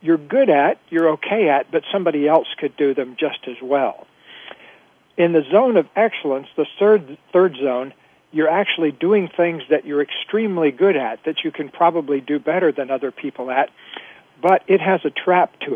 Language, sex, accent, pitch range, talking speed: English, male, American, 145-175 Hz, 185 wpm